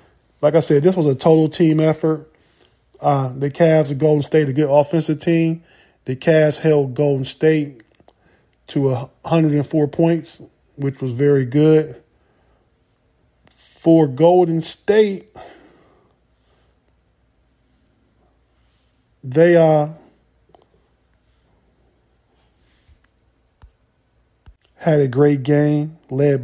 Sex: male